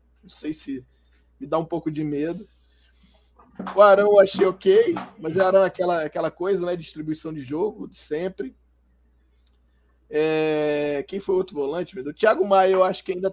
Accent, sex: Brazilian, male